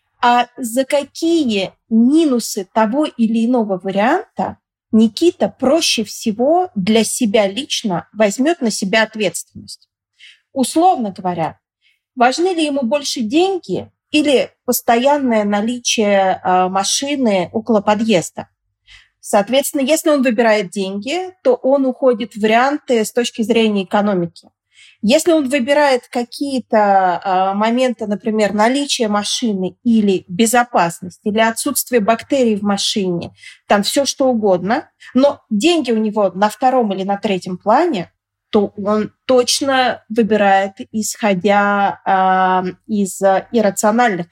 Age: 30-49